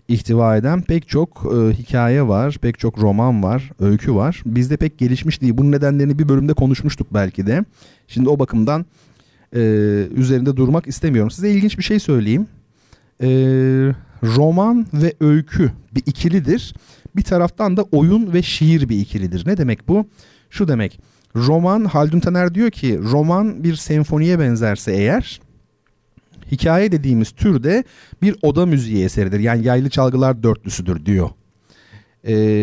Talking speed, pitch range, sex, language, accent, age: 145 wpm, 110-155 Hz, male, Turkish, native, 40-59